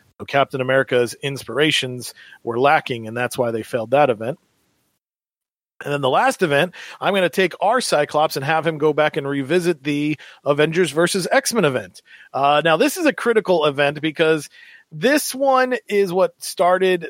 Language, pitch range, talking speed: English, 135-175 Hz, 170 wpm